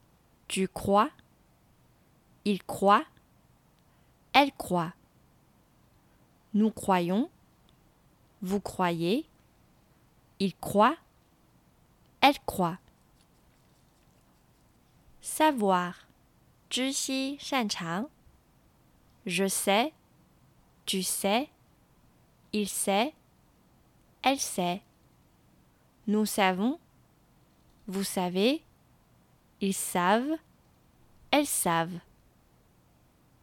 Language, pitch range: Chinese, 175-250 Hz